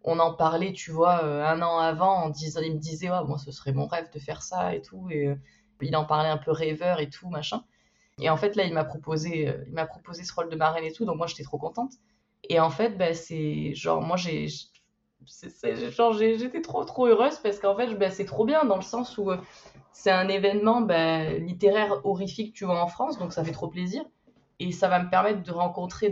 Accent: French